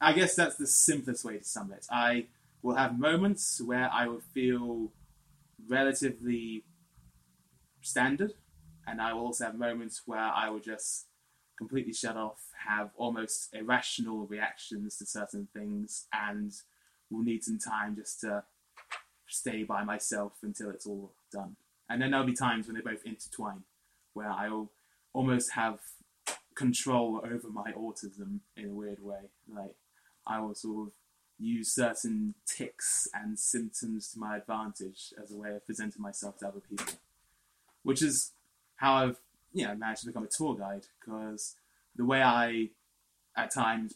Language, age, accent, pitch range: English, 20-39, British, 105-130 Hz